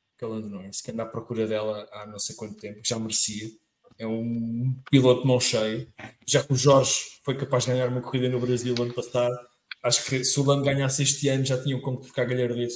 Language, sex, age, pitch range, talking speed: English, male, 20-39, 115-135 Hz, 220 wpm